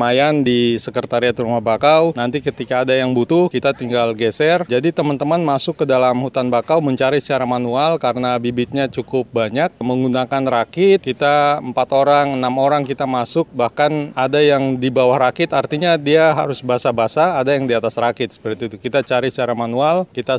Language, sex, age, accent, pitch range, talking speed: Indonesian, male, 30-49, native, 125-155 Hz, 170 wpm